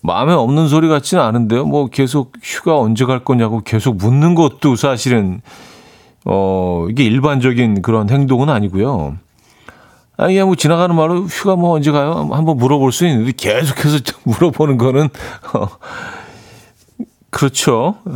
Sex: male